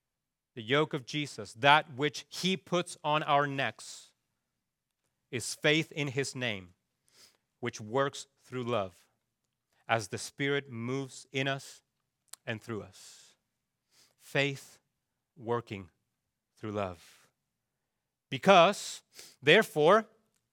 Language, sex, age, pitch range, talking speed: English, male, 40-59, 140-205 Hz, 100 wpm